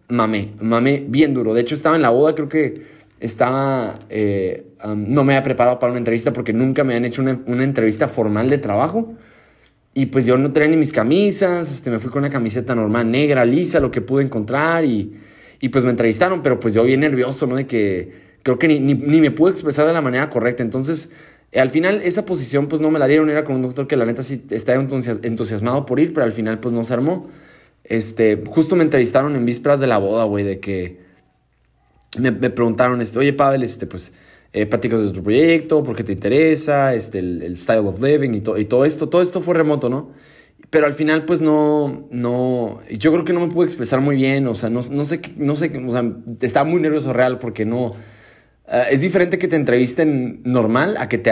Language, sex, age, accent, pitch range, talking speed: Spanish, male, 20-39, Mexican, 115-150 Hz, 225 wpm